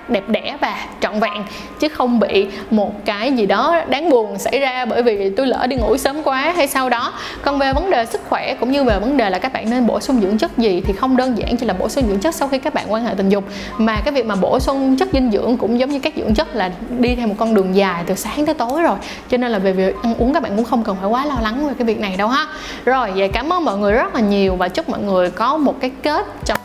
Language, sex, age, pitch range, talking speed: Vietnamese, female, 20-39, 205-270 Hz, 295 wpm